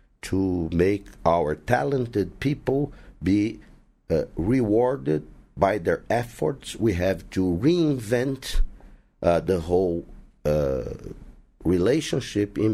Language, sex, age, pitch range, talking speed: English, male, 50-69, 90-145 Hz, 100 wpm